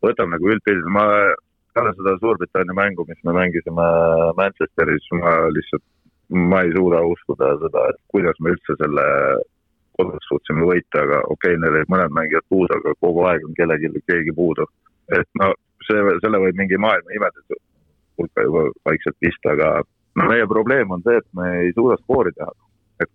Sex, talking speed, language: male, 150 wpm, English